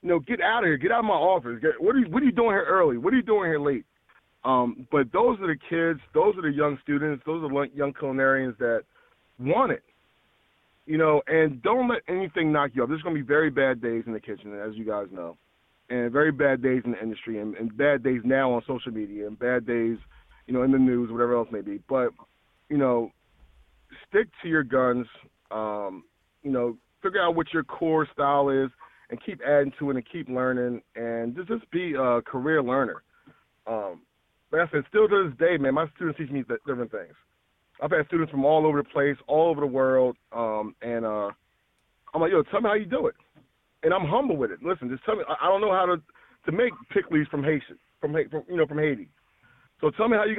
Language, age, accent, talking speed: English, 30-49, American, 235 wpm